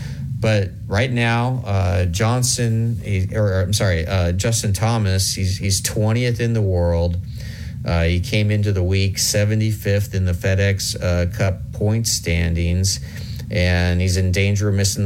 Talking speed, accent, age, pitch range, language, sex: 155 wpm, American, 40-59, 90-105 Hz, English, male